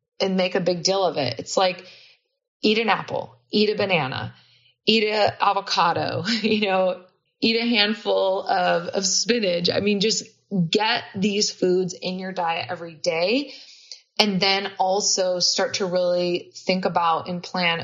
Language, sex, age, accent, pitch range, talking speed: English, female, 20-39, American, 165-195 Hz, 160 wpm